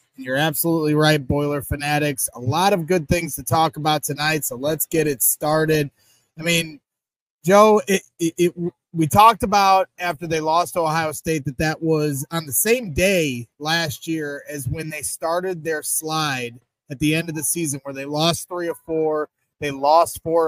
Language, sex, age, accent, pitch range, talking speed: English, male, 30-49, American, 145-180 Hz, 180 wpm